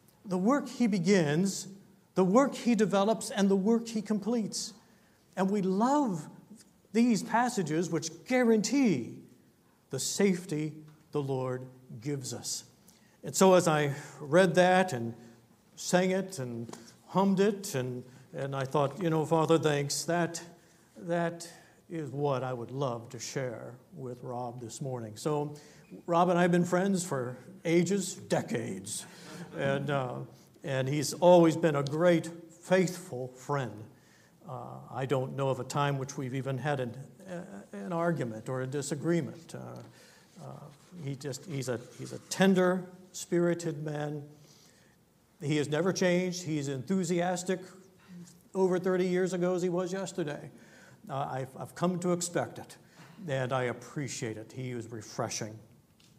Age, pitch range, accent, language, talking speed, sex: 60-79, 135-185 Hz, American, English, 145 wpm, male